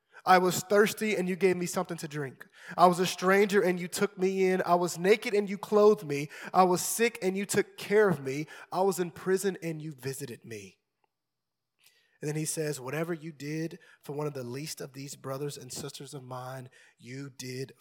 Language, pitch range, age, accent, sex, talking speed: English, 140-185 Hz, 20-39, American, male, 215 wpm